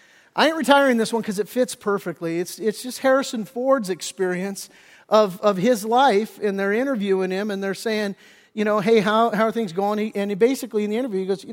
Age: 50-69